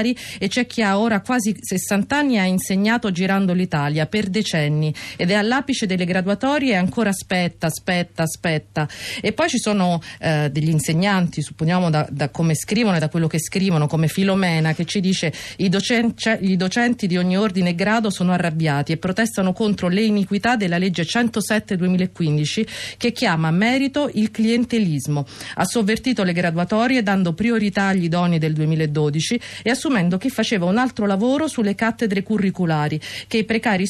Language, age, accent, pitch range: Italian, 40-59, native, 170-225 Hz